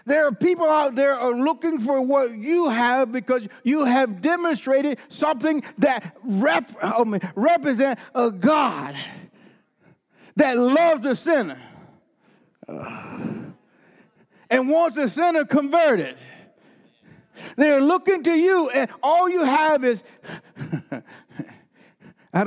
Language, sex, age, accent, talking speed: English, male, 60-79, American, 110 wpm